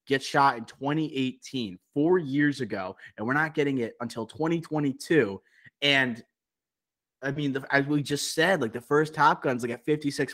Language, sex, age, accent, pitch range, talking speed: English, male, 20-39, American, 115-145 Hz, 175 wpm